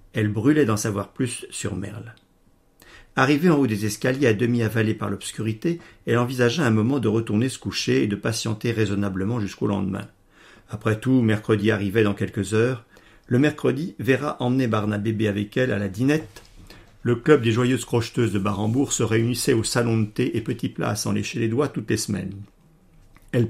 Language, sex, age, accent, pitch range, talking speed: French, male, 50-69, French, 105-120 Hz, 185 wpm